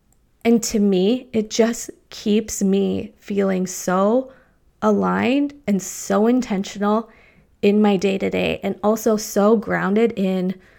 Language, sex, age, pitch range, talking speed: English, female, 20-39, 190-230 Hz, 130 wpm